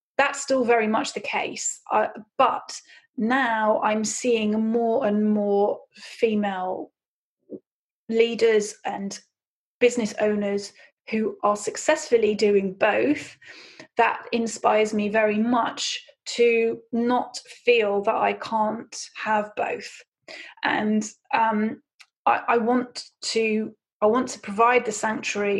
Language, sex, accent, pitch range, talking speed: English, female, British, 205-235 Hz, 115 wpm